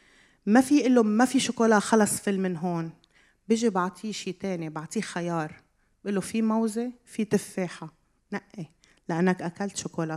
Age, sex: 30-49, female